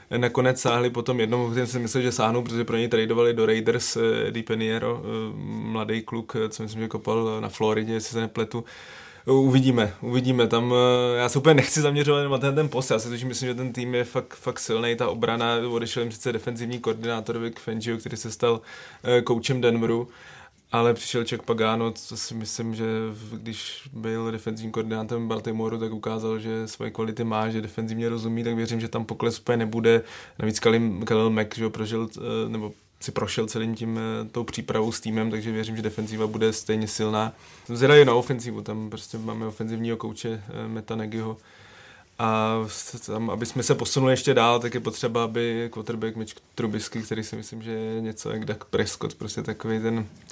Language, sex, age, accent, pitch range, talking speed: Czech, male, 20-39, native, 110-120 Hz, 180 wpm